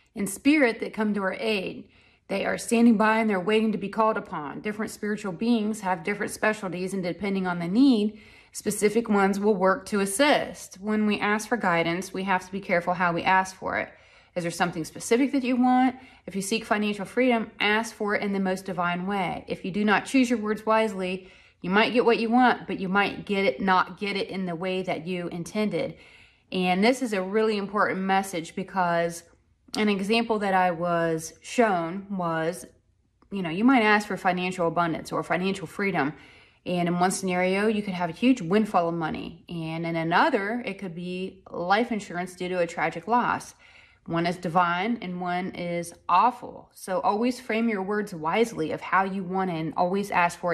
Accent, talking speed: American, 200 wpm